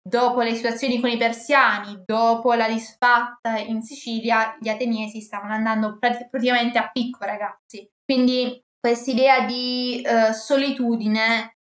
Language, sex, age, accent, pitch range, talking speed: Italian, female, 20-39, native, 230-285 Hz, 130 wpm